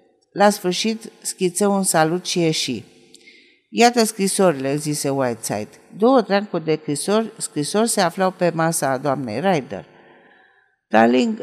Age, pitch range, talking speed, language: 50-69, 155-205 Hz, 125 wpm, Romanian